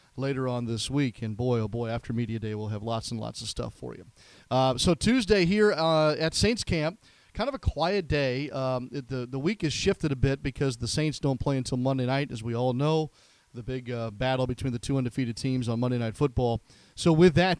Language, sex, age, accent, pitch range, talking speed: English, male, 40-59, American, 125-150 Hz, 240 wpm